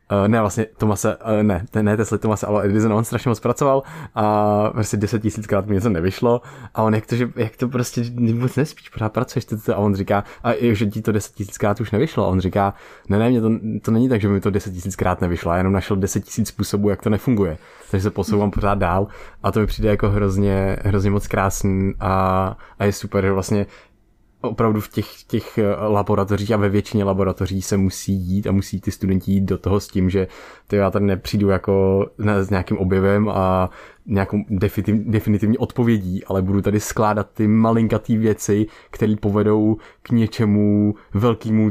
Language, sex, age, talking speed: Czech, male, 20-39, 200 wpm